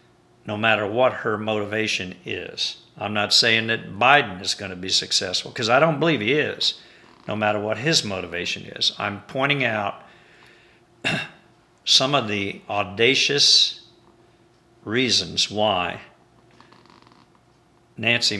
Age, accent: 50-69, American